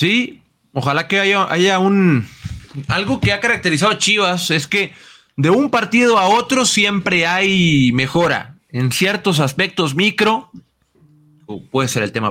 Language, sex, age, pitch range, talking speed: Spanish, male, 30-49, 140-190 Hz, 145 wpm